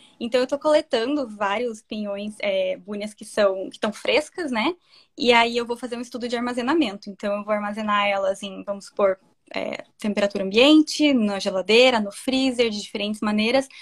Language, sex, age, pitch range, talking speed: Portuguese, female, 10-29, 205-240 Hz, 175 wpm